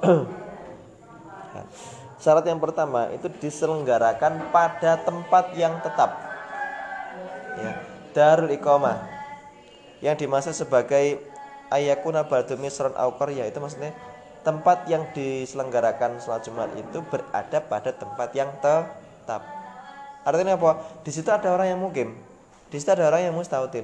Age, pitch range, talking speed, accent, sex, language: 20-39, 125-170 Hz, 120 wpm, native, male, Indonesian